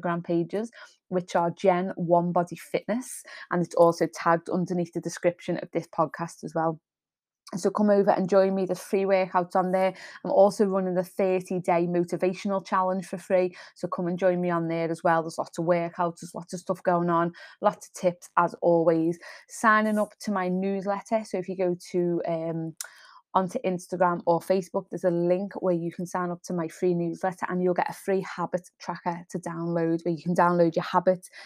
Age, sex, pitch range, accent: 20-39, female, 170-190 Hz, British